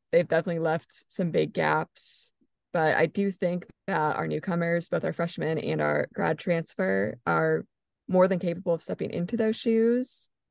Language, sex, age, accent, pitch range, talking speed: English, female, 20-39, American, 150-185 Hz, 165 wpm